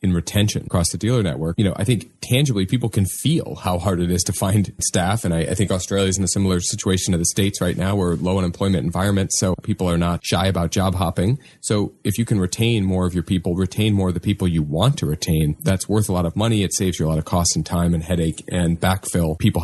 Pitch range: 85-100 Hz